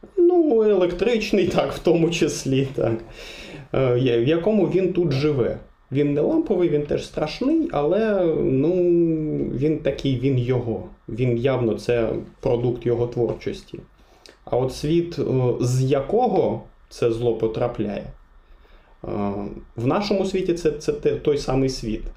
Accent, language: native, Russian